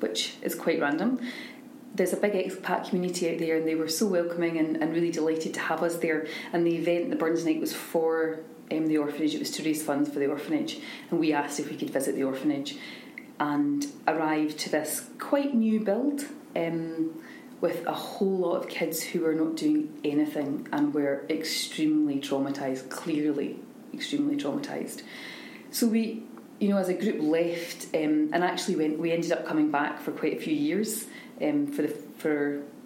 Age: 30-49